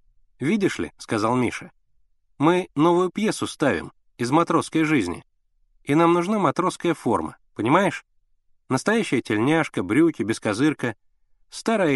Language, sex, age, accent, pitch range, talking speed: Russian, male, 30-49, native, 105-160 Hz, 125 wpm